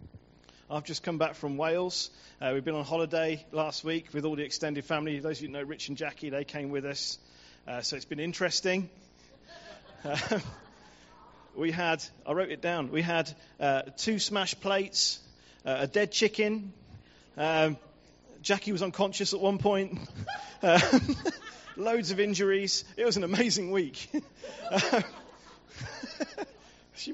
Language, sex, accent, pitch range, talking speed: English, male, British, 140-180 Hz, 155 wpm